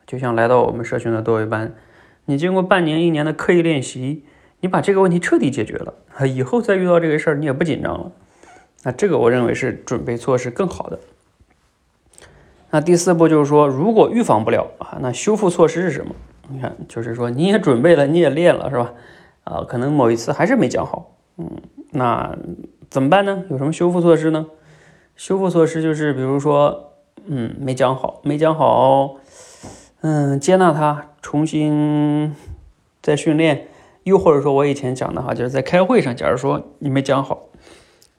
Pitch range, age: 130-170 Hz, 30-49